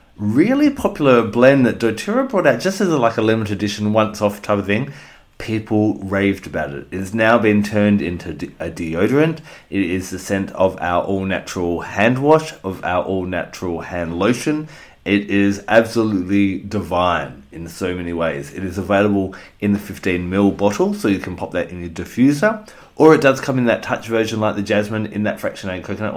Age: 30-49